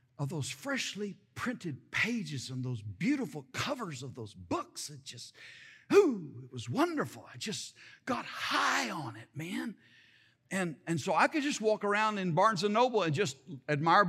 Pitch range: 135-225 Hz